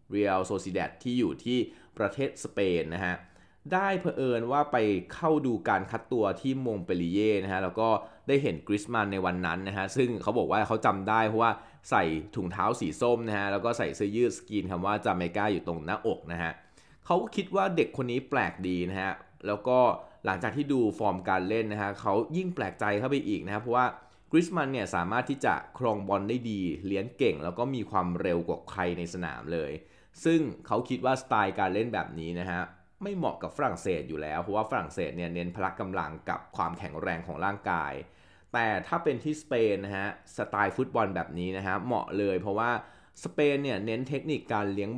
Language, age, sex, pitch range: Thai, 20-39, male, 90-130 Hz